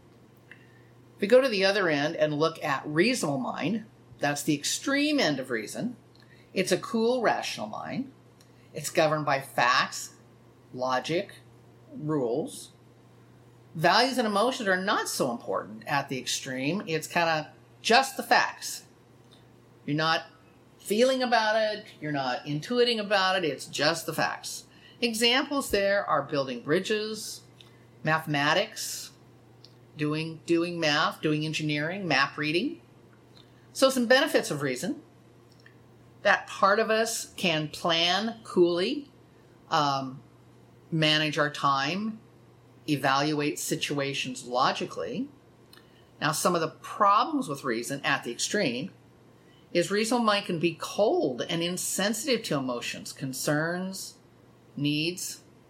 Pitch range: 140-200 Hz